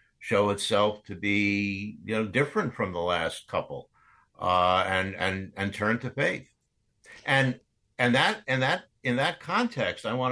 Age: 60-79